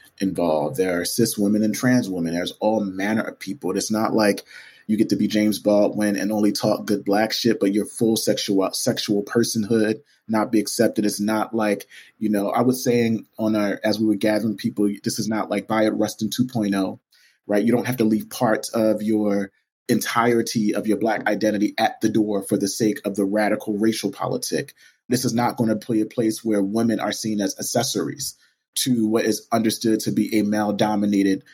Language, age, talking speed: English, 30-49, 205 wpm